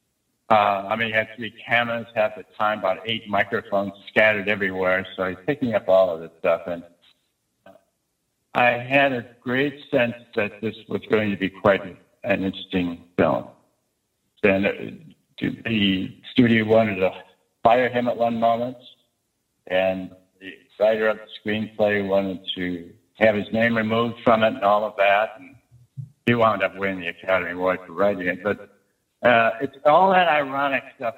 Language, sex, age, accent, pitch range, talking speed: English, male, 70-89, American, 95-115 Hz, 165 wpm